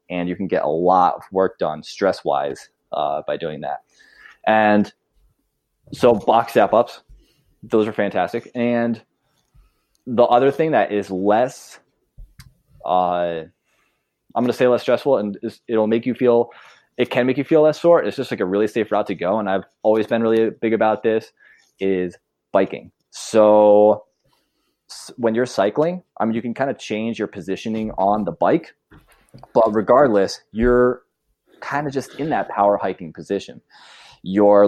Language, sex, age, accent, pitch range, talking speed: English, male, 20-39, American, 95-115 Hz, 165 wpm